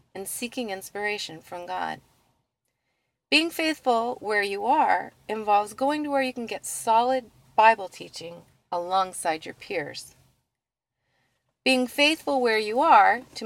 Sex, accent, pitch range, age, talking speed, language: female, American, 185-255 Hz, 40-59, 130 wpm, English